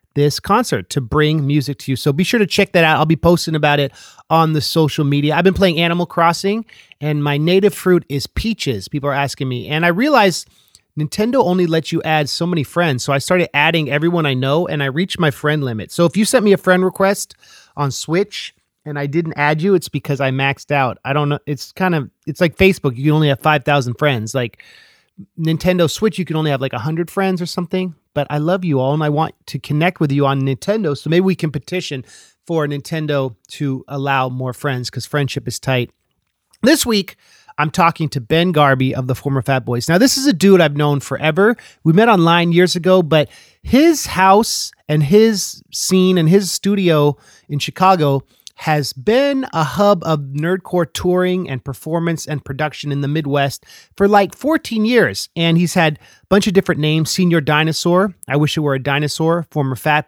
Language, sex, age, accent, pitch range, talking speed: English, male, 30-49, American, 140-180 Hz, 210 wpm